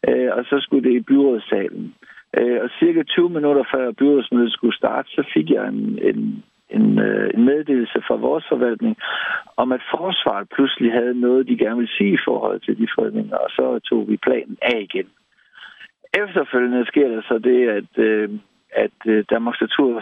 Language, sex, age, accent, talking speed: Danish, male, 60-79, native, 165 wpm